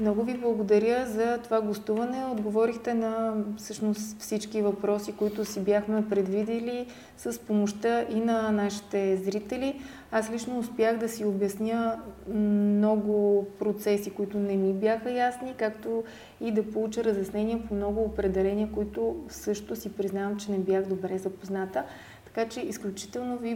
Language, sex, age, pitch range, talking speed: Bulgarian, female, 30-49, 205-230 Hz, 140 wpm